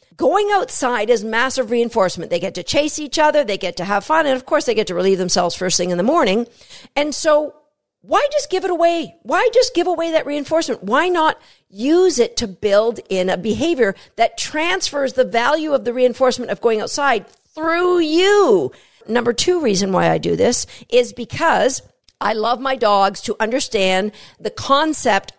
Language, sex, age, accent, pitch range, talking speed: English, female, 50-69, American, 205-300 Hz, 190 wpm